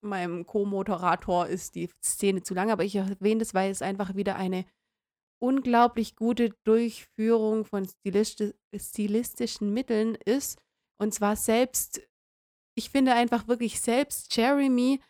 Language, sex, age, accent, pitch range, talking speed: German, female, 30-49, German, 195-230 Hz, 125 wpm